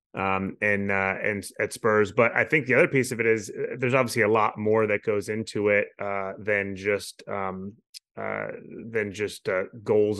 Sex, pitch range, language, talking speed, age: male, 100-115 Hz, English, 195 wpm, 20-39